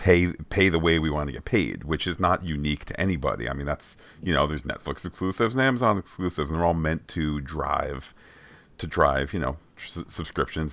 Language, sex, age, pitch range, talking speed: English, male, 40-59, 75-90 Hz, 215 wpm